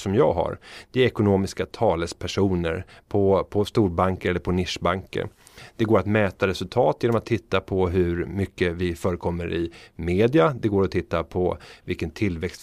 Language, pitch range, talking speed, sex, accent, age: Swedish, 95-115 Hz, 165 wpm, male, native, 30-49